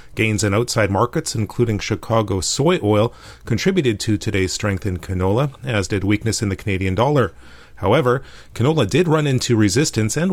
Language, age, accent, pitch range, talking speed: English, 30-49, American, 100-125 Hz, 165 wpm